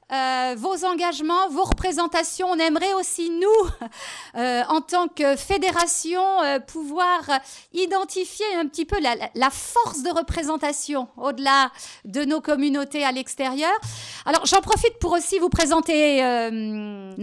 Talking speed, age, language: 135 wpm, 50-69, French